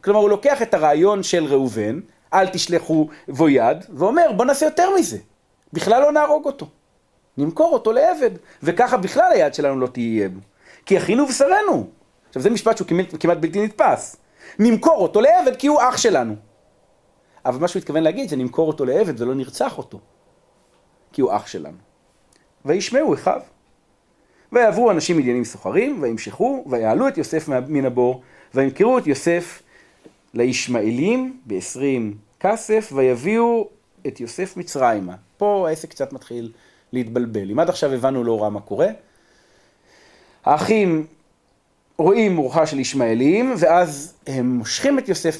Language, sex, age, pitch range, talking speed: Hebrew, male, 40-59, 130-215 Hz, 140 wpm